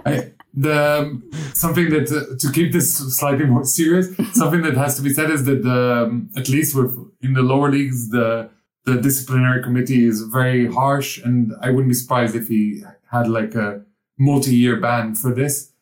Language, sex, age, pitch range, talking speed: English, male, 30-49, 120-145 Hz, 190 wpm